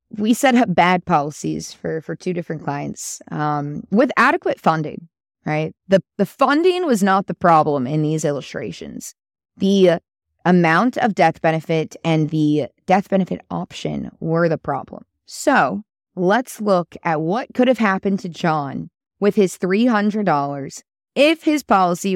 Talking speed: 145 wpm